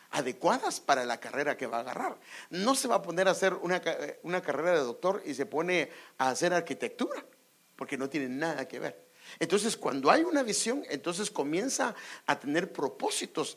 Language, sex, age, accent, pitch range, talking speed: English, male, 50-69, Mexican, 145-235 Hz, 185 wpm